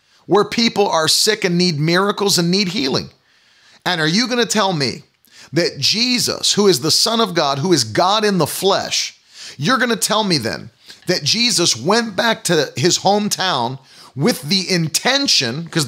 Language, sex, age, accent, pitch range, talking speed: English, male, 40-59, American, 140-195 Hz, 180 wpm